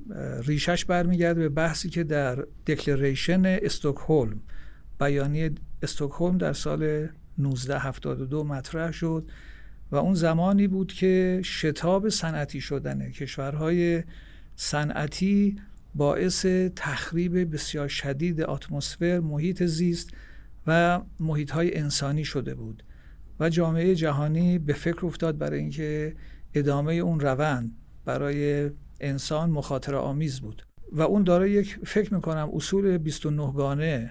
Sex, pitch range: male, 140-170 Hz